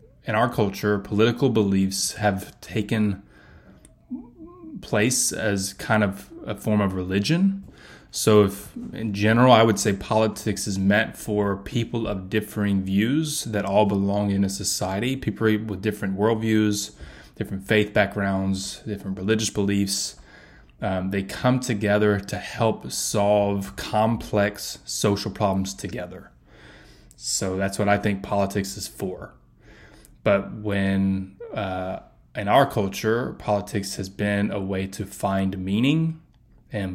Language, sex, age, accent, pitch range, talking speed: English, male, 20-39, American, 100-110 Hz, 130 wpm